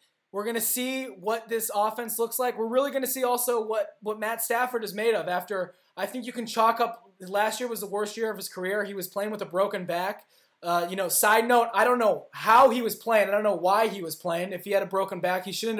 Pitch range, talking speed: 190-230 Hz, 275 wpm